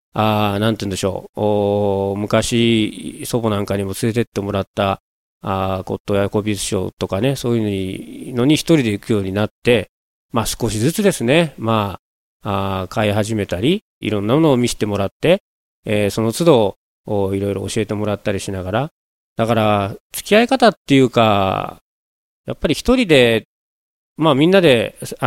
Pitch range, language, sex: 105-145 Hz, Japanese, male